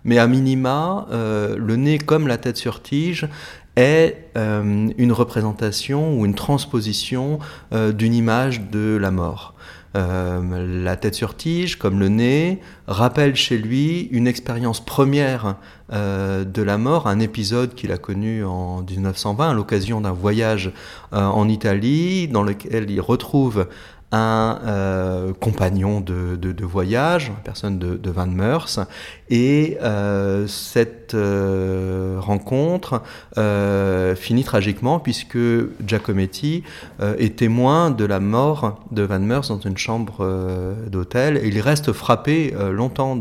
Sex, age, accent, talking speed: male, 30-49, French, 145 wpm